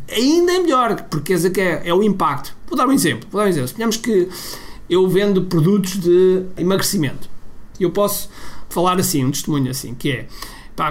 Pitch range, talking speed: 140-190 Hz, 170 wpm